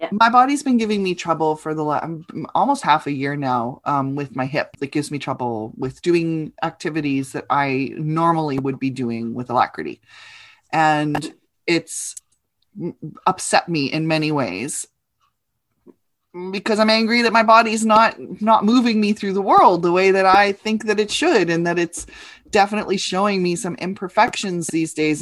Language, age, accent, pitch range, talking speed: English, 20-39, American, 150-200 Hz, 170 wpm